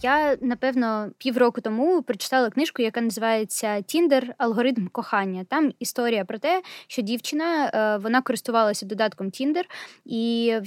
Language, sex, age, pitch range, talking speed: Ukrainian, female, 20-39, 230-275 Hz, 130 wpm